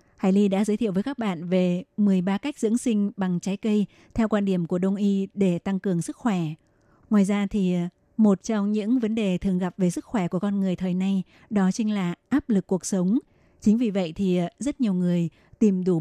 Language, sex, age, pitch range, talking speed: Vietnamese, female, 20-39, 185-220 Hz, 230 wpm